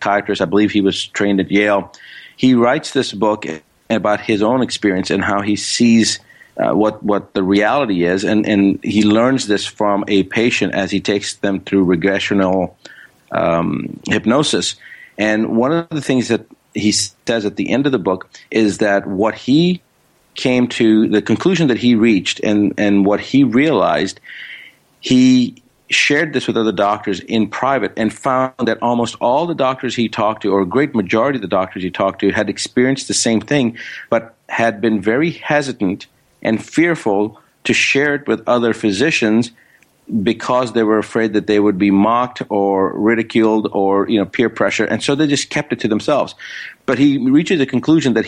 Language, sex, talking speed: English, male, 185 wpm